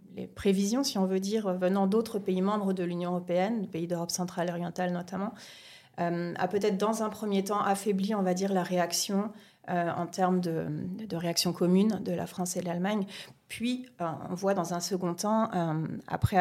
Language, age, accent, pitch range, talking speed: French, 30-49, French, 180-215 Hz, 195 wpm